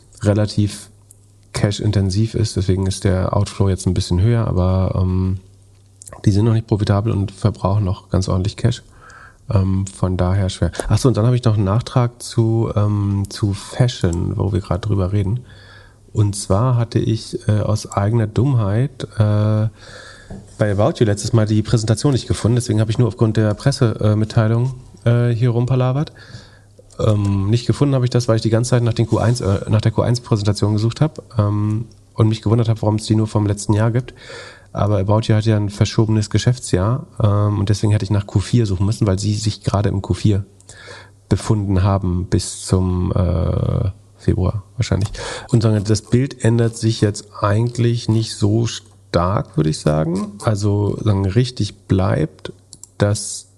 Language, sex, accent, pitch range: German, male, German, 100-115 Hz